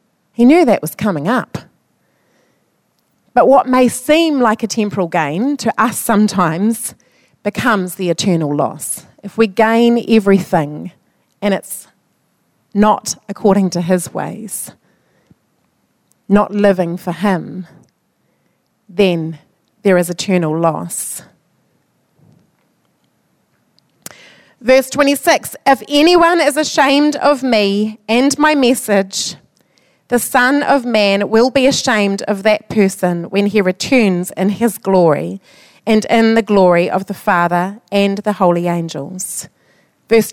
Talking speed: 120 wpm